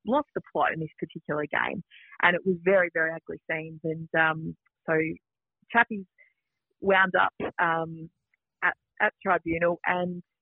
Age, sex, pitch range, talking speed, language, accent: 30-49, female, 165-215 Hz, 145 wpm, English, Australian